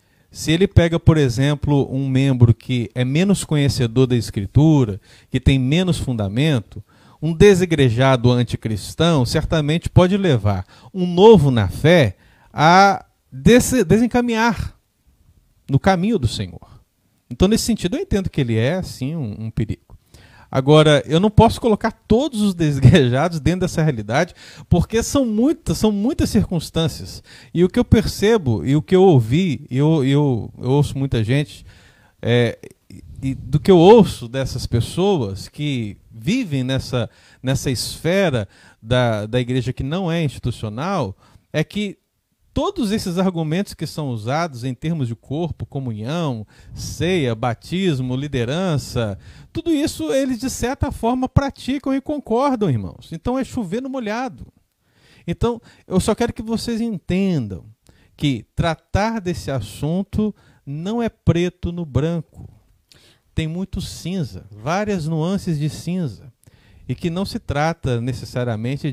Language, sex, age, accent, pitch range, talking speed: Portuguese, male, 40-59, Brazilian, 120-185 Hz, 135 wpm